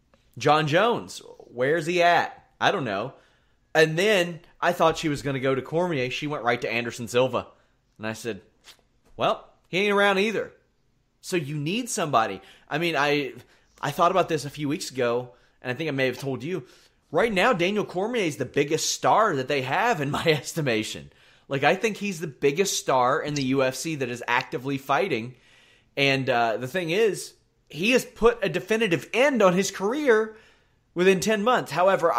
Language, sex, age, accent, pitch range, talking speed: English, male, 30-49, American, 125-175 Hz, 190 wpm